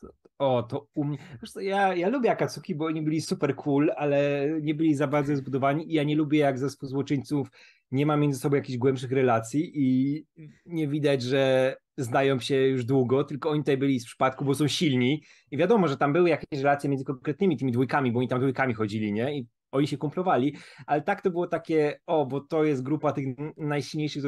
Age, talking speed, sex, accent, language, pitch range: 20-39, 205 wpm, male, native, Polish, 135-160 Hz